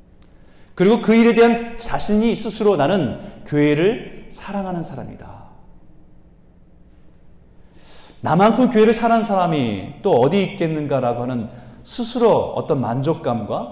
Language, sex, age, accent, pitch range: Korean, male, 40-59, native, 110-185 Hz